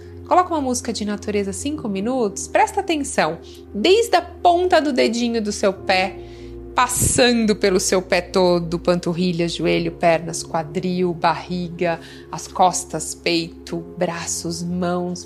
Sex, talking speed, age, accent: female, 125 wpm, 20-39, Brazilian